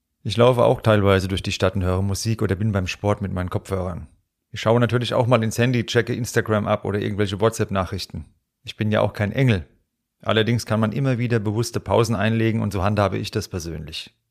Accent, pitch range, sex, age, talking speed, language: German, 100-120 Hz, male, 40-59, 210 wpm, German